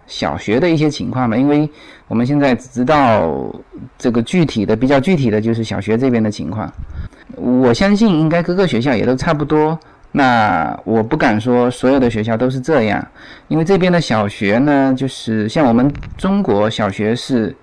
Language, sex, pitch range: Chinese, male, 115-155 Hz